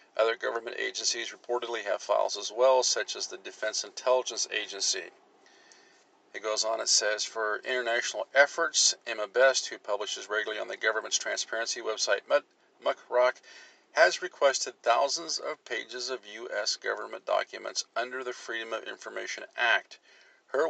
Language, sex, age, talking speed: English, male, 50-69, 140 wpm